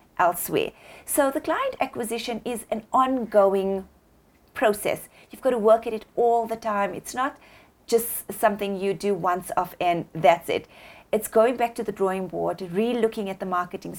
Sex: female